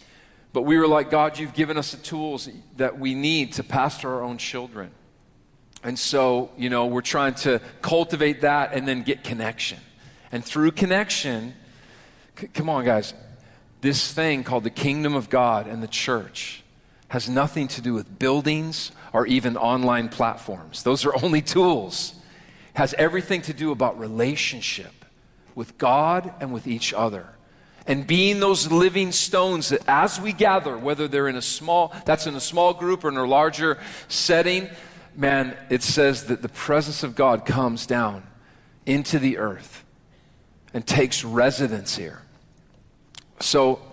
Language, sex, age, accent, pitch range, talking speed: English, male, 40-59, American, 120-155 Hz, 160 wpm